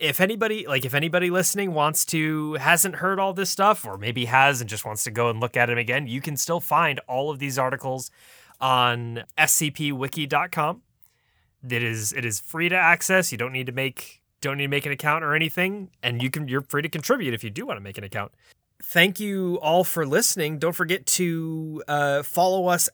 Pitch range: 125-185 Hz